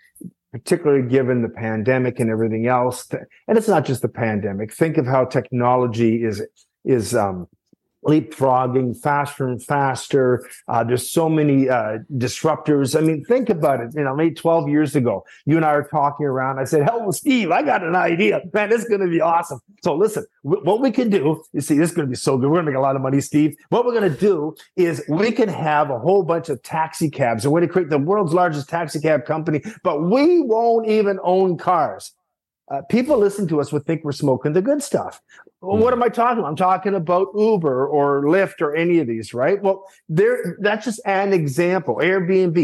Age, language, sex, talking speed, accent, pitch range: 50-69, English, male, 215 wpm, American, 140-190 Hz